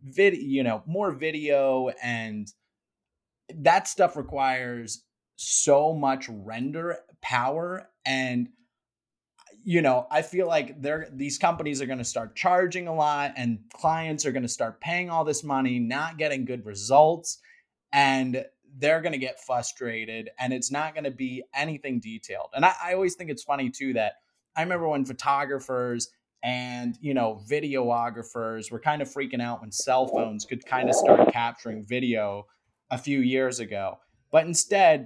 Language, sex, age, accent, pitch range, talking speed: English, male, 30-49, American, 120-155 Hz, 160 wpm